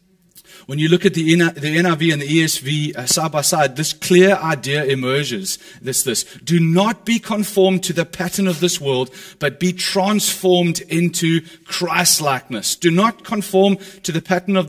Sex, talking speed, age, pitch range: male, 165 wpm, 30-49, 160-190 Hz